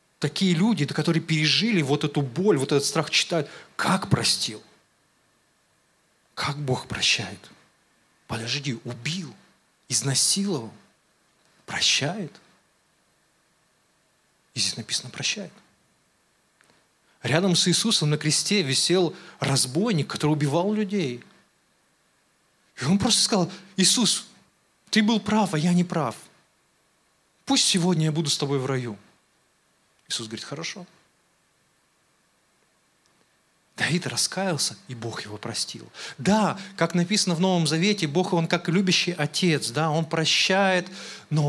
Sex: male